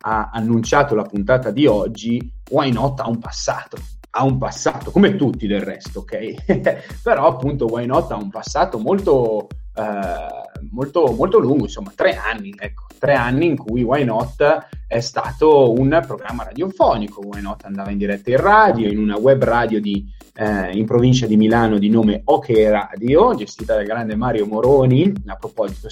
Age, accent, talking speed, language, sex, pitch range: 30-49, native, 170 wpm, Italian, male, 105-140 Hz